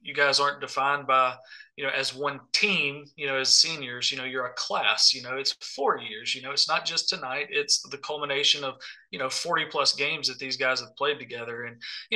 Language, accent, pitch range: English, American, 135-160 Hz